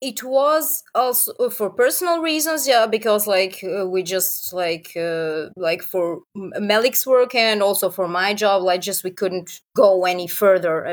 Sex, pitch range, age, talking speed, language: female, 175-220 Hz, 20-39, 165 wpm, English